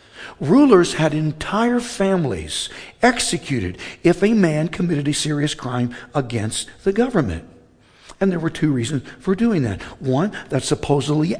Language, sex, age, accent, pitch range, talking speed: English, male, 60-79, American, 140-190 Hz, 135 wpm